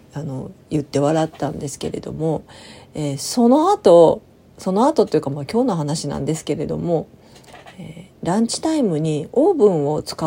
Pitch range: 150-230 Hz